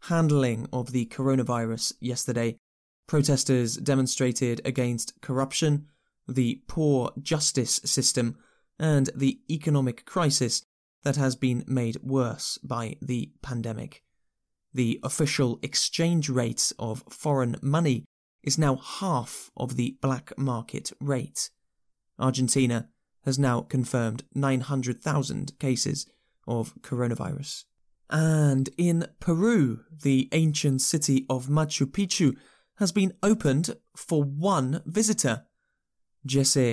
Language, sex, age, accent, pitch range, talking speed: English, male, 20-39, British, 125-150 Hz, 105 wpm